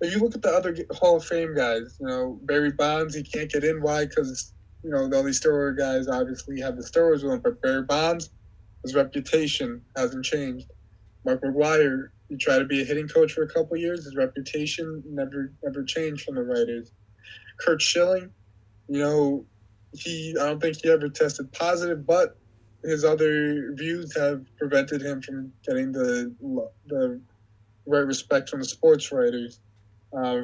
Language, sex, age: English, male, 20-39